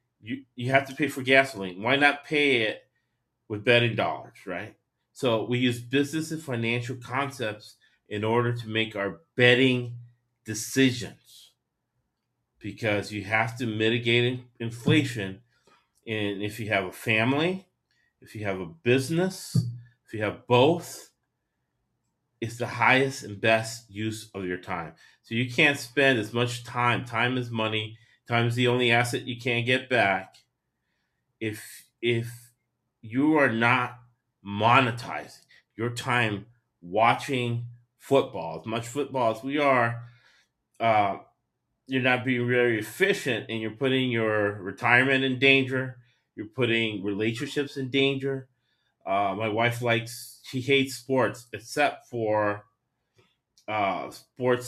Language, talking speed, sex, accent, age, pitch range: English, 135 wpm, male, American, 30-49, 110-130 Hz